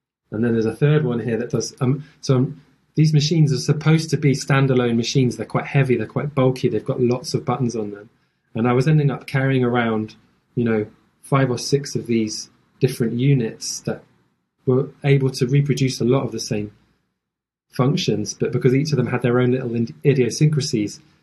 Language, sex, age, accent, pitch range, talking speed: English, male, 20-39, British, 120-140 Hz, 200 wpm